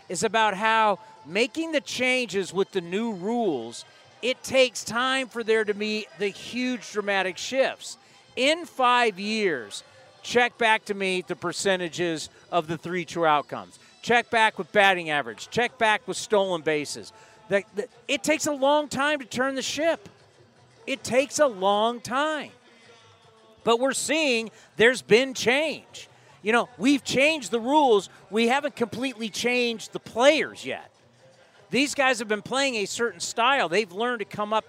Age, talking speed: 40-59, 155 wpm